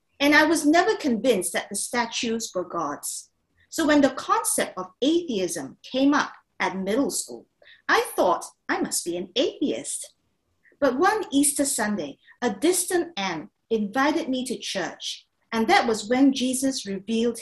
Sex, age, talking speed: female, 50-69, 155 wpm